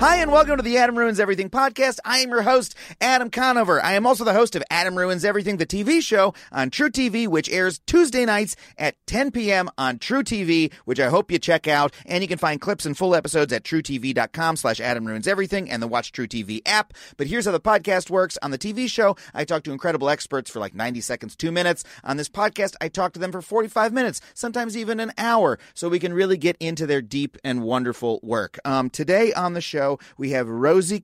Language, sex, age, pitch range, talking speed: English, male, 30-49, 140-205 Hz, 230 wpm